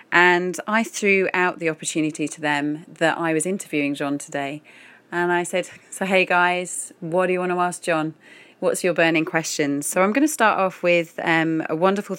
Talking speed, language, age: 200 wpm, English, 30-49